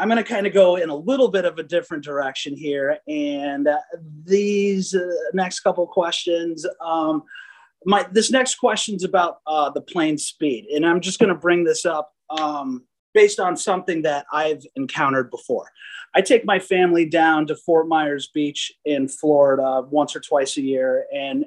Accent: American